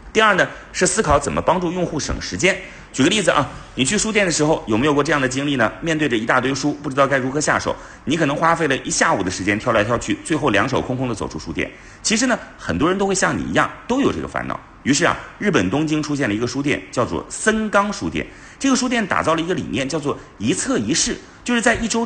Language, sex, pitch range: Chinese, male, 140-210 Hz